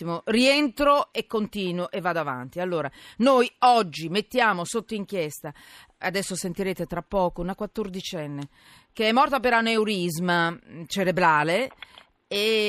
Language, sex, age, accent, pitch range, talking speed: Italian, female, 40-59, native, 165-220 Hz, 120 wpm